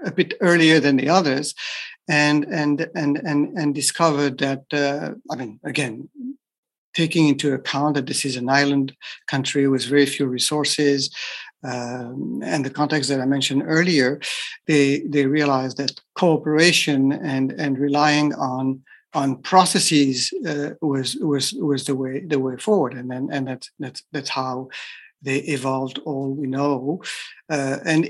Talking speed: 150 wpm